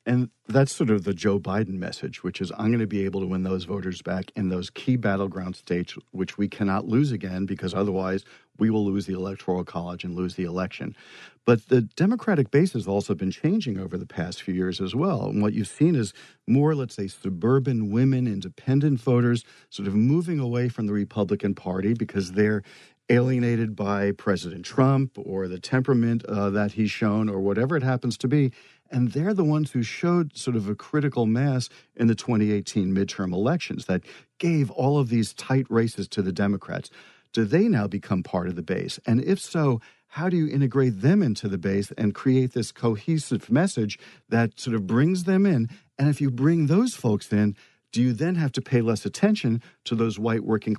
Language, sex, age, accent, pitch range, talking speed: English, male, 50-69, American, 100-135 Hz, 200 wpm